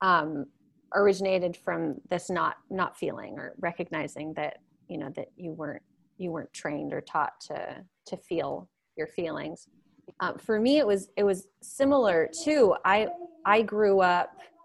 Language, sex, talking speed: English, female, 155 wpm